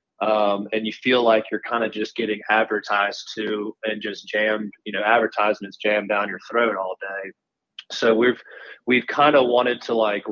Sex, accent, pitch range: male, American, 105-115 Hz